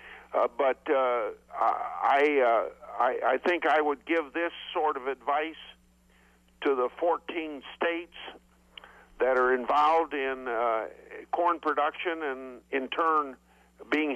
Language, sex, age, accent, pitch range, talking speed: English, male, 50-69, American, 140-170 Hz, 125 wpm